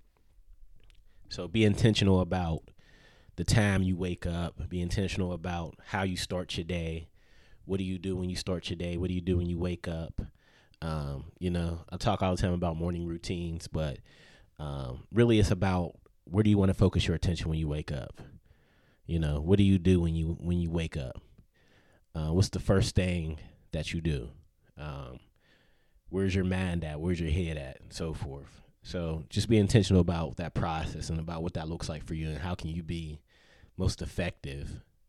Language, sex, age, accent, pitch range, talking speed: English, male, 30-49, American, 80-95 Hz, 200 wpm